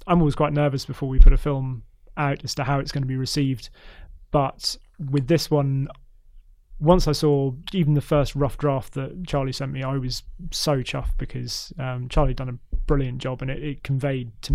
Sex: male